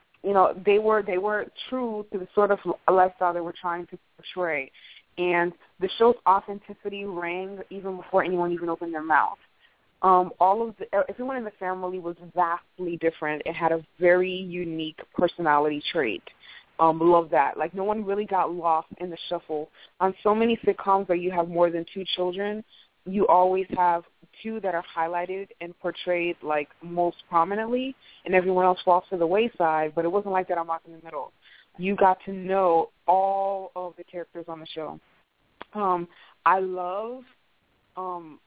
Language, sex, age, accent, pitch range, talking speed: English, female, 20-39, American, 170-195 Hz, 180 wpm